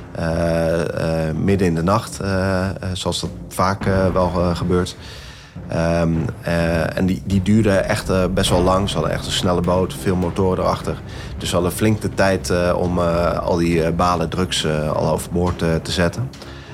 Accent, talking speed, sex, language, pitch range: Dutch, 185 wpm, male, Dutch, 85-95 Hz